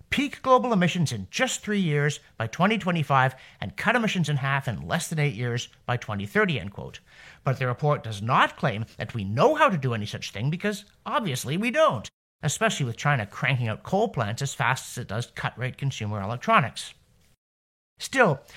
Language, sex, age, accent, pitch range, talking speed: English, male, 50-69, American, 120-190 Hz, 185 wpm